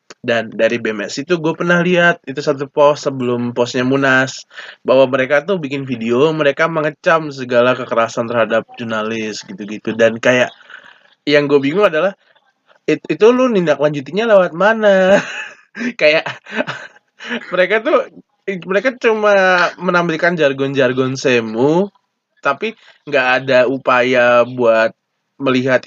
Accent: native